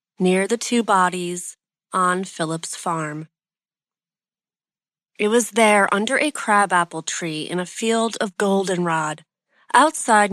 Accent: American